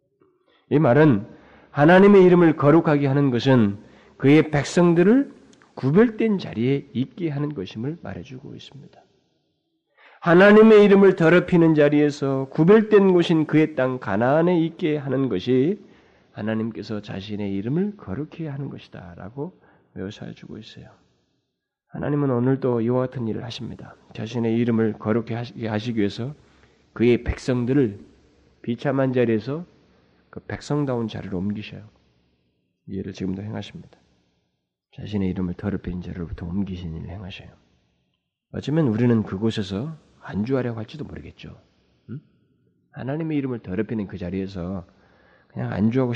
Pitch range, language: 95-145 Hz, Korean